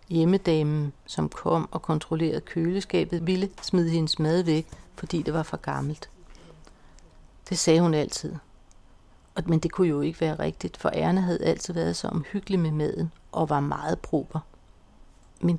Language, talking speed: Danish, 160 wpm